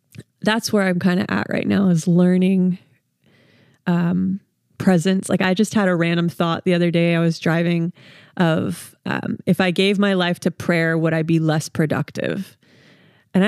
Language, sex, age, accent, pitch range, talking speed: English, female, 20-39, American, 160-185 Hz, 180 wpm